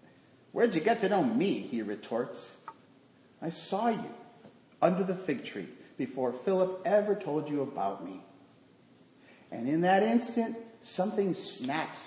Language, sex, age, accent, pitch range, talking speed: English, male, 40-59, American, 145-210 Hz, 140 wpm